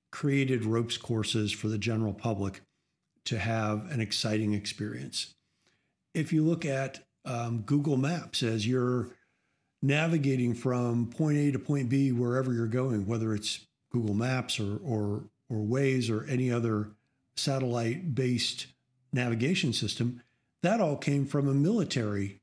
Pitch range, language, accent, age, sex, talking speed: 115-140 Hz, English, American, 50-69, male, 135 wpm